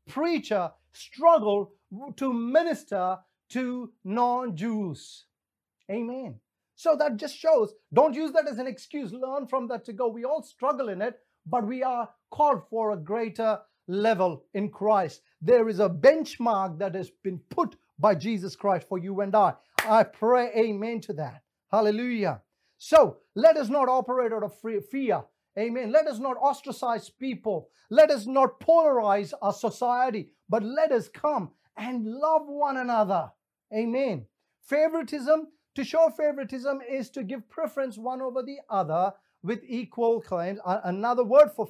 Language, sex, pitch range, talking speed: English, male, 200-270 Hz, 155 wpm